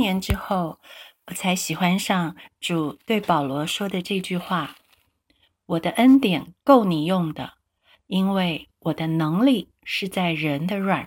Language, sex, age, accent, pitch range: Chinese, female, 50-69, native, 155-205 Hz